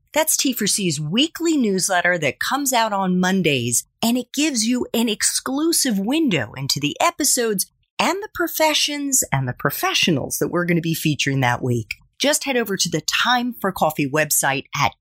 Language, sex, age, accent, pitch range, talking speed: English, female, 40-59, American, 150-245 Hz, 170 wpm